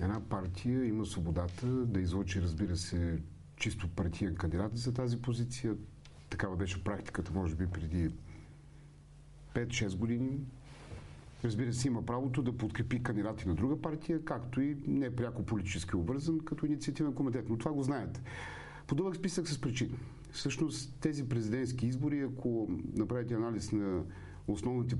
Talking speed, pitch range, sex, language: 140 wpm, 95-130 Hz, male, Bulgarian